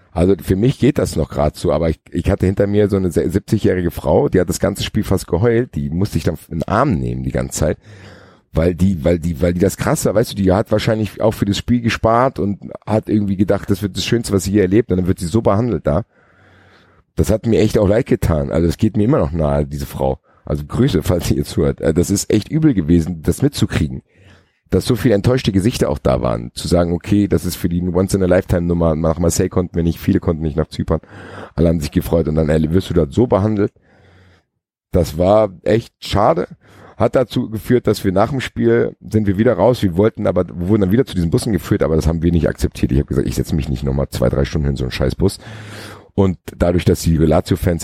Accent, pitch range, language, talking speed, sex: German, 80-105 Hz, German, 245 wpm, male